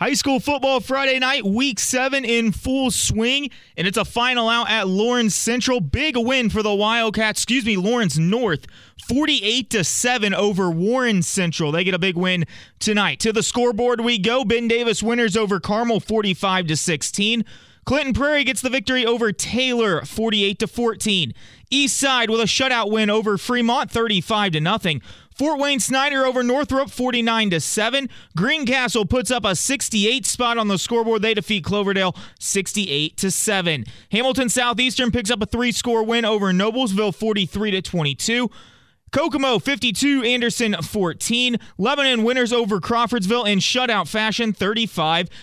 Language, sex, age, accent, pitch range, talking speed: English, male, 30-49, American, 200-245 Hz, 140 wpm